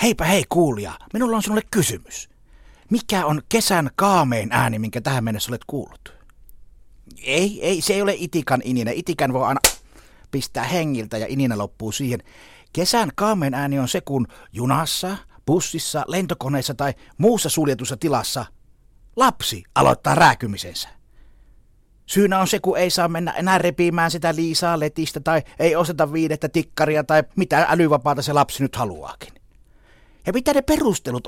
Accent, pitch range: native, 125-185 Hz